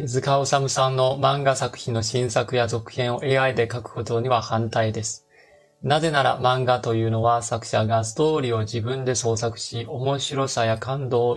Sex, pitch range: male, 115-135 Hz